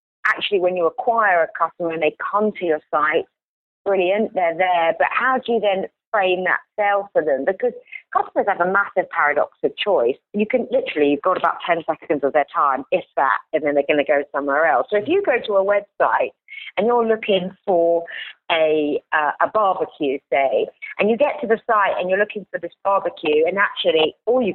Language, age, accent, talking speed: English, 40-59, British, 210 wpm